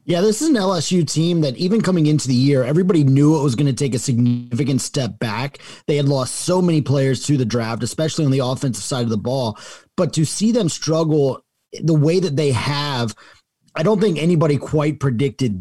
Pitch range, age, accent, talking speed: 130-160 Hz, 30-49, American, 215 wpm